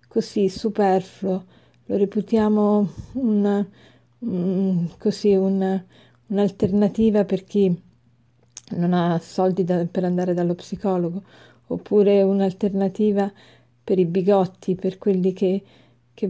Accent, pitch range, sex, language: native, 185-215 Hz, female, Italian